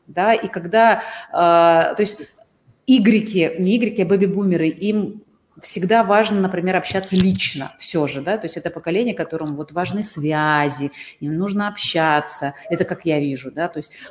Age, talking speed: 30-49, 160 wpm